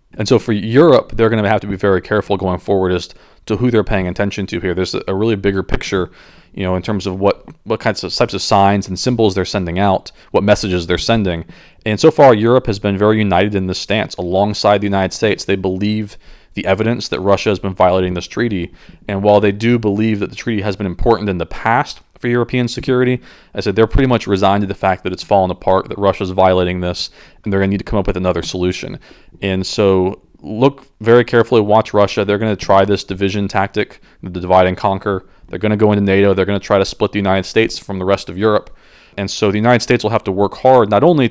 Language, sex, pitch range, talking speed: English, male, 95-105 Hz, 245 wpm